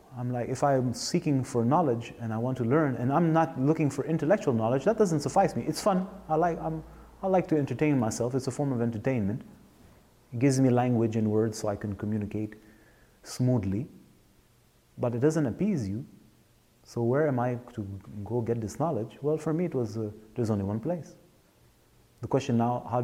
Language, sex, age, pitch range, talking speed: English, male, 30-49, 110-150 Hz, 200 wpm